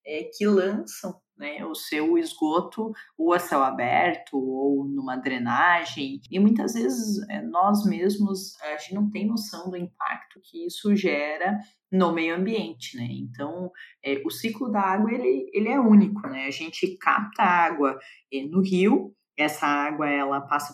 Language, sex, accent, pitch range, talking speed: Portuguese, female, Brazilian, 150-210 Hz, 150 wpm